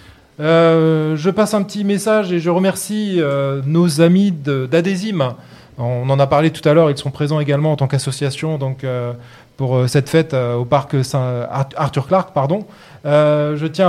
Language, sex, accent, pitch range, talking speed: French, male, French, 130-160 Hz, 185 wpm